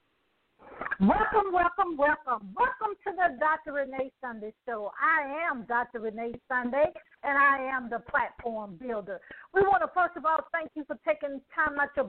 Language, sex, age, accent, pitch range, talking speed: English, female, 50-69, American, 245-330 Hz, 175 wpm